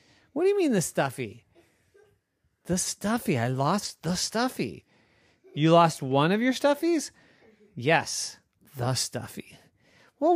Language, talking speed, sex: English, 125 wpm, male